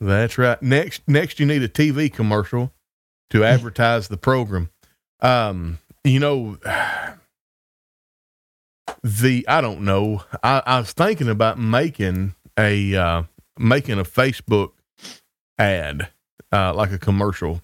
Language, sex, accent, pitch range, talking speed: English, male, American, 95-125 Hz, 125 wpm